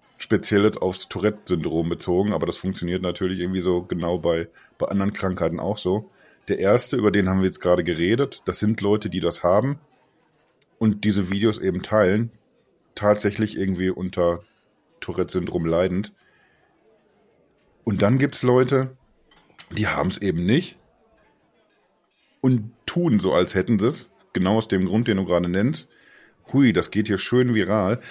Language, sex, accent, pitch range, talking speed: German, male, German, 95-115 Hz, 160 wpm